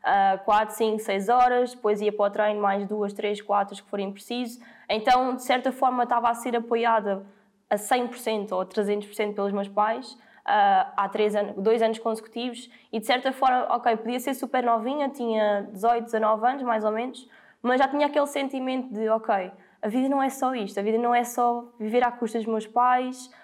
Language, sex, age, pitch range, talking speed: Portuguese, female, 10-29, 215-250 Hz, 200 wpm